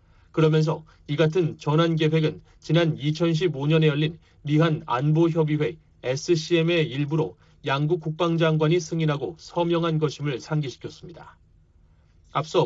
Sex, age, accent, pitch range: male, 40-59, native, 150-165 Hz